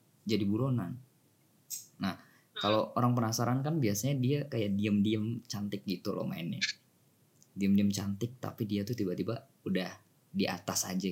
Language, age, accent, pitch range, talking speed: Indonesian, 20-39, native, 100-130 Hz, 135 wpm